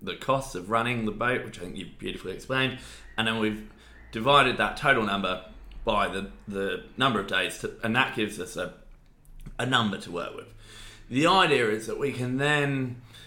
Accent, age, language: British, 20-39, English